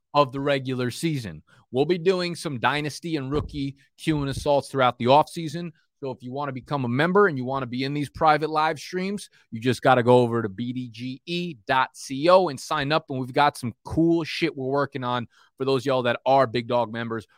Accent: American